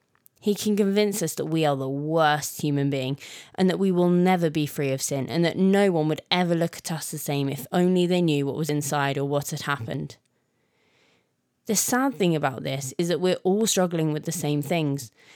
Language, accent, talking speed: English, British, 220 wpm